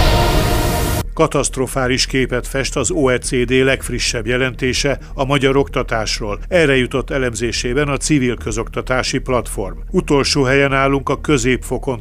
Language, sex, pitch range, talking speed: Hungarian, male, 120-145 Hz, 110 wpm